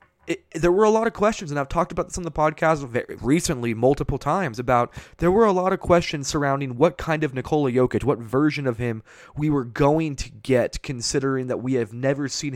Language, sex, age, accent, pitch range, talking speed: English, male, 20-39, American, 120-165 Hz, 225 wpm